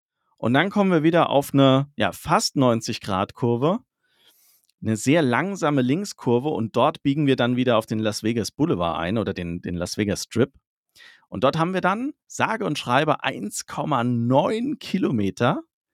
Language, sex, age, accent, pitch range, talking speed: German, male, 40-59, German, 110-150 Hz, 155 wpm